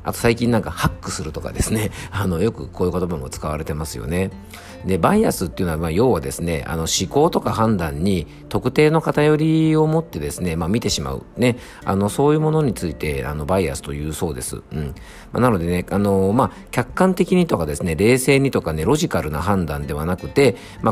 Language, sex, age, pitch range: Japanese, male, 50-69, 80-120 Hz